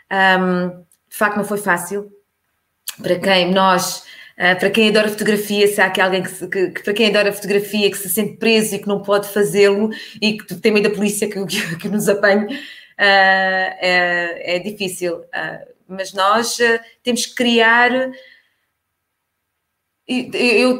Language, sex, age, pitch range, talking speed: Portuguese, female, 20-39, 185-225 Hz, 165 wpm